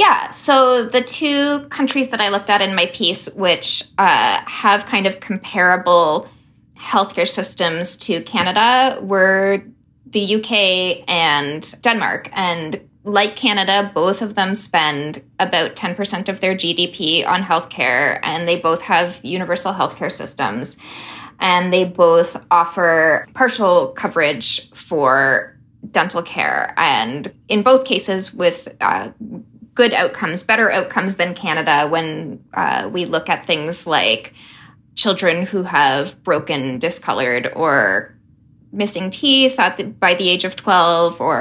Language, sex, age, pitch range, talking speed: English, female, 10-29, 170-215 Hz, 130 wpm